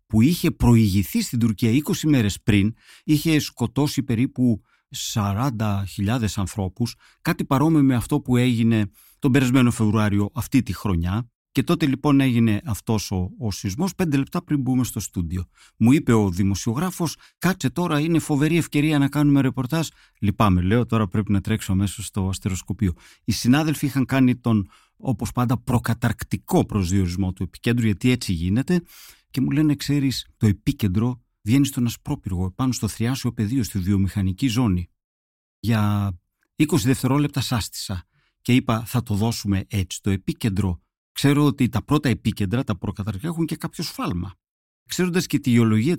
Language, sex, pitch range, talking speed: Greek, male, 100-140 Hz, 150 wpm